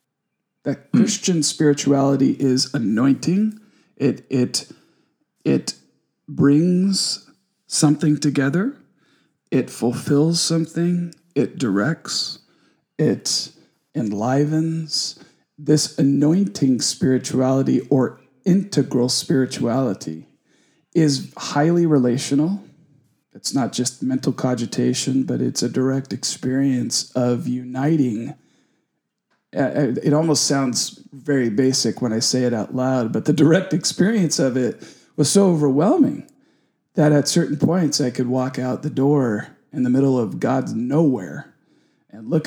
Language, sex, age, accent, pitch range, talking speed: English, male, 40-59, American, 130-150 Hz, 110 wpm